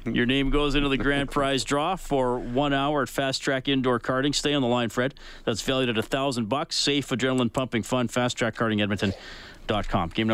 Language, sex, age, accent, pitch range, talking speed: English, male, 40-59, American, 130-175 Hz, 210 wpm